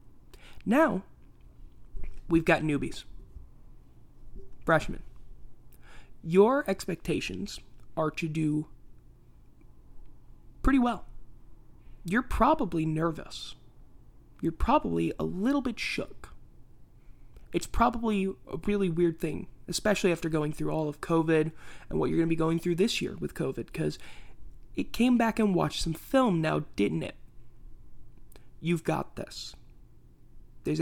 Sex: male